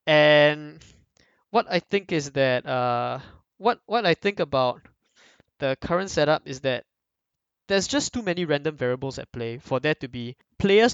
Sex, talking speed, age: male, 165 wpm, 20-39